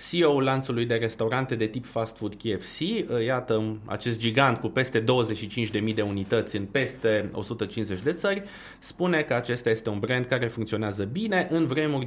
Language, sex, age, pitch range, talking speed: Romanian, male, 30-49, 110-145 Hz, 165 wpm